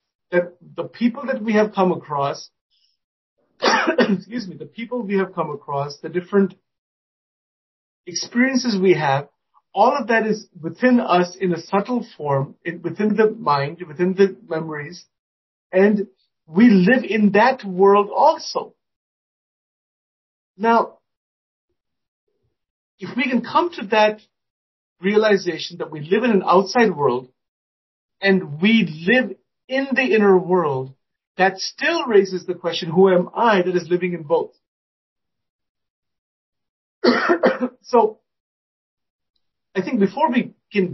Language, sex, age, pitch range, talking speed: English, male, 50-69, 165-220 Hz, 125 wpm